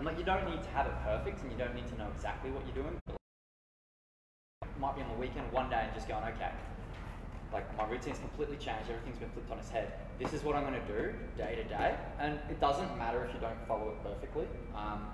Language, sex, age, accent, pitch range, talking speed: English, male, 20-39, Australian, 100-120 Hz, 245 wpm